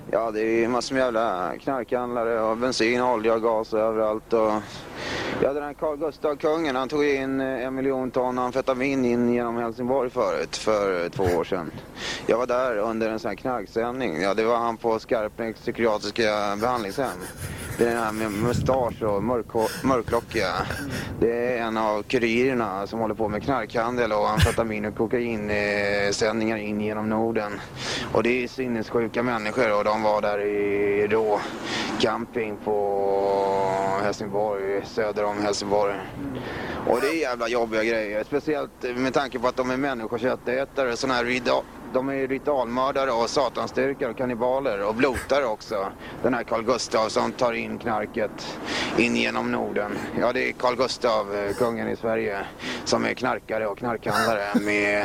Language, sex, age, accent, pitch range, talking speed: Swedish, male, 30-49, native, 105-125 Hz, 165 wpm